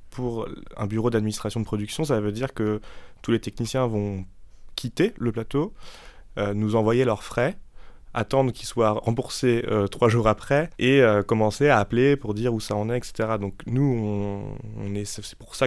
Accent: French